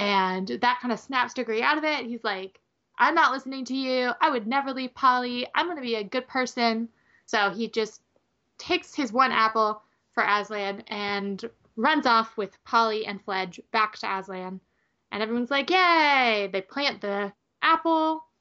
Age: 20-39